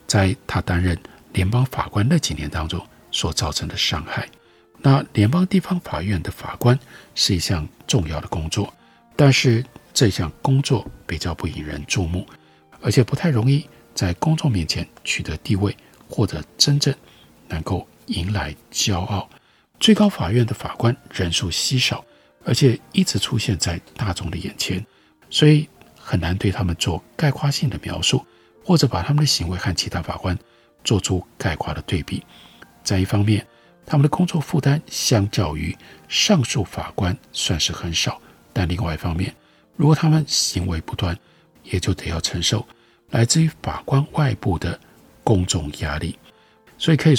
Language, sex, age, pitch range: Chinese, male, 50-69, 90-140 Hz